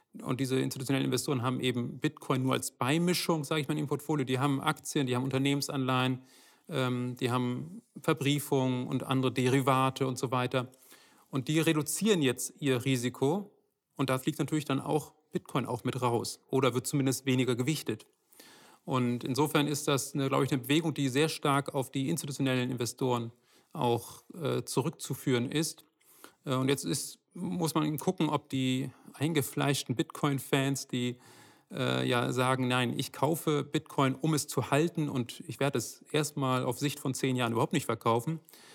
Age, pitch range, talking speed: 40-59, 125-150 Hz, 160 wpm